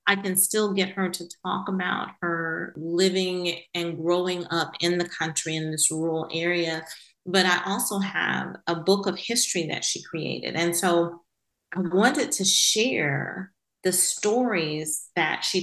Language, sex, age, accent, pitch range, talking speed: English, female, 40-59, American, 165-195 Hz, 155 wpm